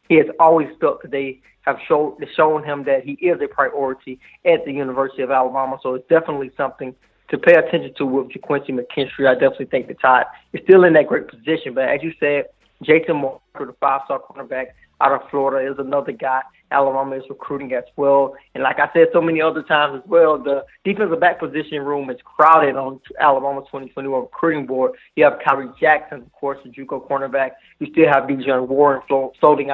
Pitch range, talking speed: 135-155 Hz, 200 wpm